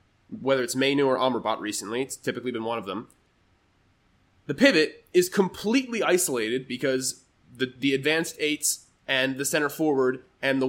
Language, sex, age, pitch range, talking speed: English, male, 20-39, 130-180 Hz, 155 wpm